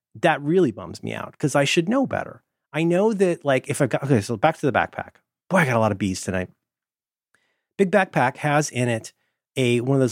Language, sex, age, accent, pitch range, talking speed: English, male, 30-49, American, 110-135 Hz, 235 wpm